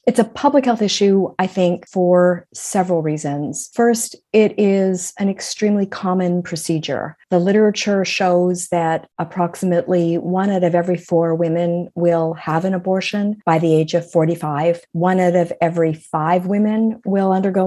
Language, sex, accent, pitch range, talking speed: English, female, American, 165-200 Hz, 155 wpm